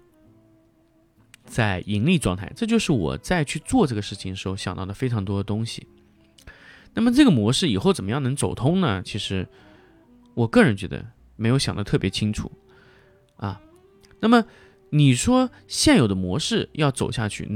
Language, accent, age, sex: Chinese, native, 20-39, male